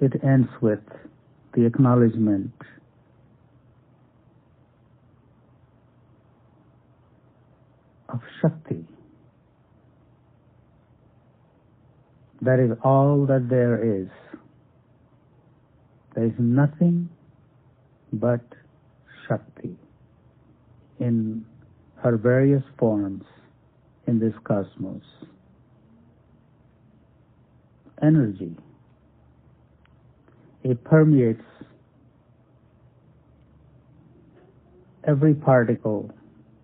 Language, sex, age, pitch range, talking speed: English, male, 60-79, 110-135 Hz, 50 wpm